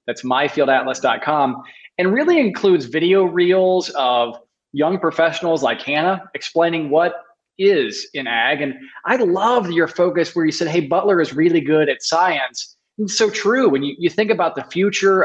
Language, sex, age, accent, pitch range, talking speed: English, male, 20-39, American, 140-180 Hz, 165 wpm